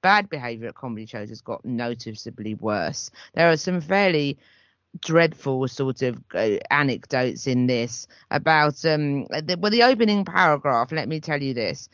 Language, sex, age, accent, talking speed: English, female, 30-49, British, 150 wpm